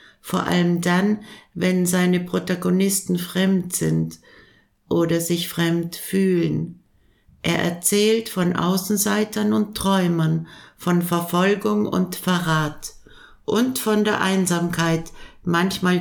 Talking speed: 100 wpm